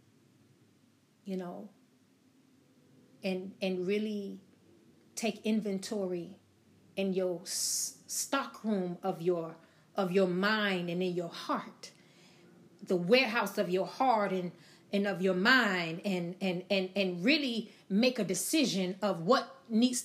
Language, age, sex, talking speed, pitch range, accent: English, 30-49, female, 120 wpm, 185-220 Hz, American